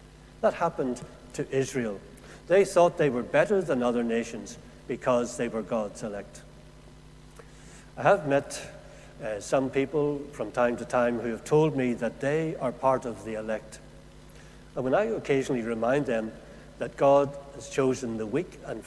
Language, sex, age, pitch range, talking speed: English, male, 60-79, 120-150 Hz, 160 wpm